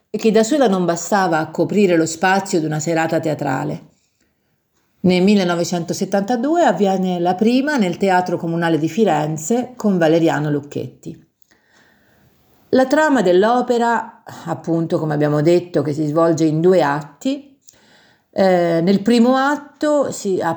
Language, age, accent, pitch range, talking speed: Italian, 50-69, native, 155-210 Hz, 130 wpm